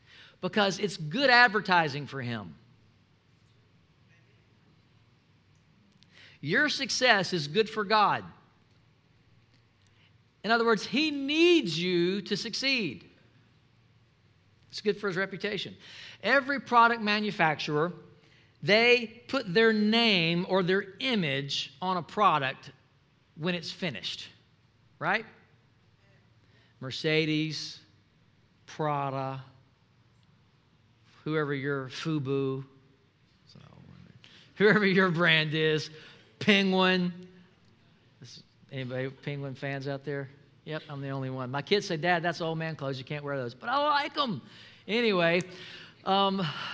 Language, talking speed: English, 105 wpm